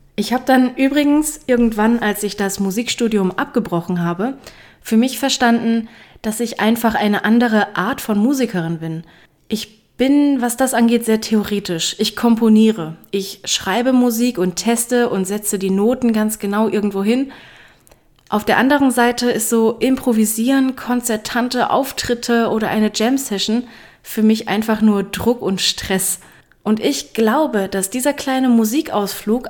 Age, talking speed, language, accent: 20-39, 145 wpm, German, German